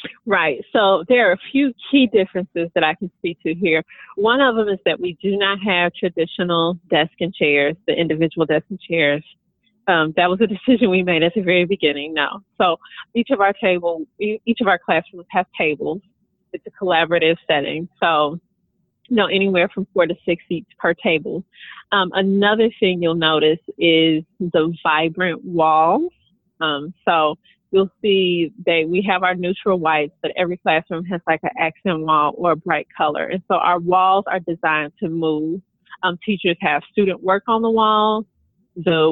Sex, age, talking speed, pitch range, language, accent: female, 30-49, 185 wpm, 165-195 Hz, English, American